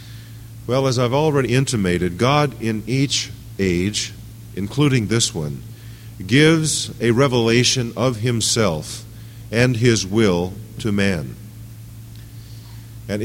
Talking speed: 105 wpm